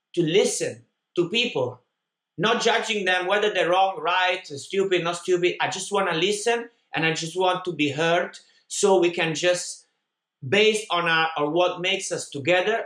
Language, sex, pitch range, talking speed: English, male, 155-195 Hz, 175 wpm